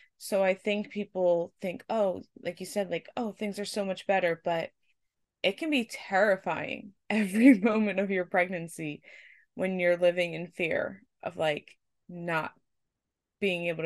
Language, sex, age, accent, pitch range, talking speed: English, female, 20-39, American, 165-195 Hz, 155 wpm